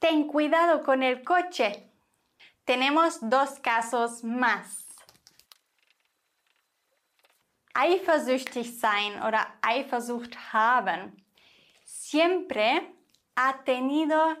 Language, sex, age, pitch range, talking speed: English, female, 20-39, 230-300 Hz, 70 wpm